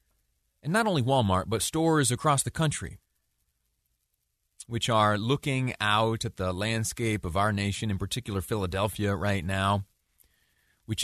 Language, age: English, 30-49